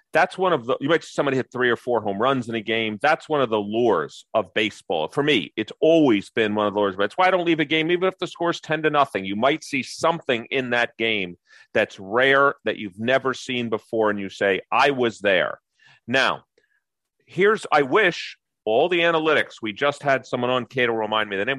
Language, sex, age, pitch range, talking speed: English, male, 40-59, 115-150 Hz, 235 wpm